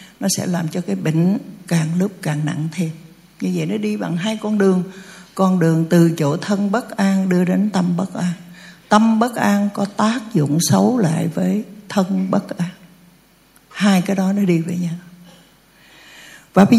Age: 60-79